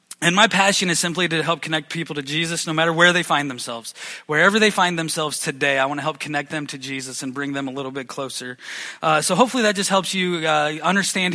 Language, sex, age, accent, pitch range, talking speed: English, male, 20-39, American, 140-165 Hz, 245 wpm